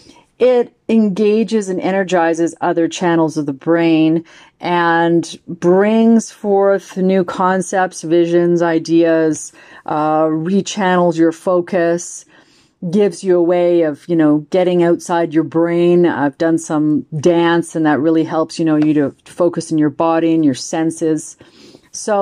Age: 40-59